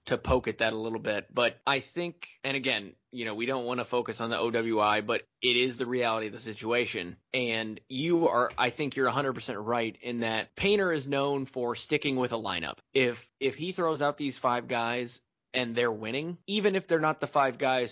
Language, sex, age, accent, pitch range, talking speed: English, male, 20-39, American, 120-145 Hz, 220 wpm